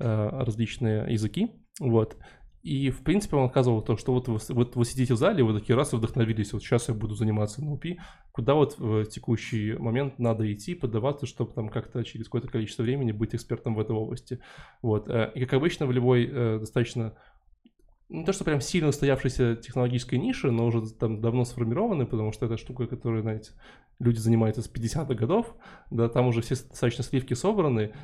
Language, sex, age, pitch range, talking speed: Russian, male, 20-39, 115-130 Hz, 180 wpm